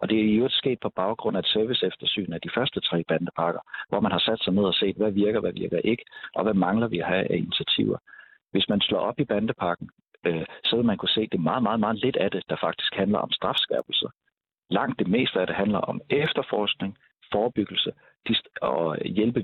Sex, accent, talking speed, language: male, native, 225 wpm, Danish